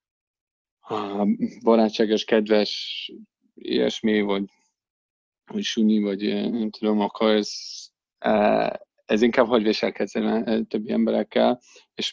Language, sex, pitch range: English, male, 105-150 Hz